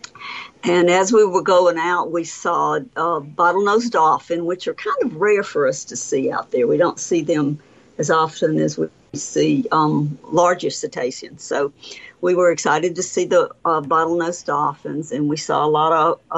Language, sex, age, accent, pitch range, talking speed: English, female, 60-79, American, 160-250 Hz, 185 wpm